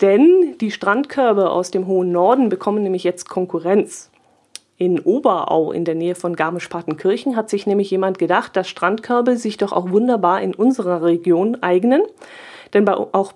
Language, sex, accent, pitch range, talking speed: German, female, German, 180-215 Hz, 160 wpm